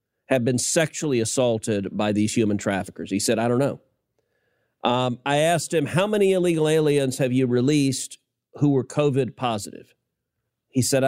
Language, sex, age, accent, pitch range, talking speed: English, male, 40-59, American, 115-155 Hz, 160 wpm